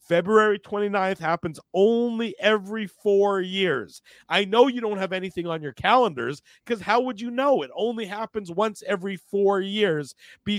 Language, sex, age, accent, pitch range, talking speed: English, male, 50-69, American, 120-170 Hz, 165 wpm